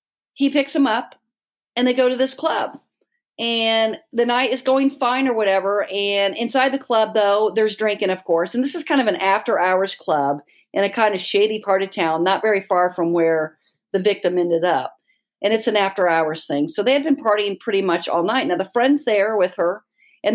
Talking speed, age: 220 wpm, 50-69